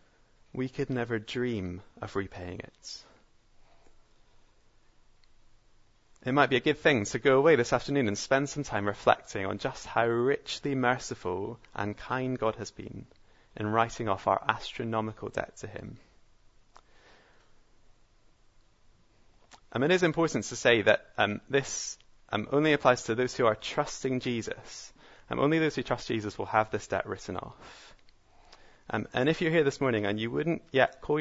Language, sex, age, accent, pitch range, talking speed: English, male, 30-49, British, 110-140 Hz, 160 wpm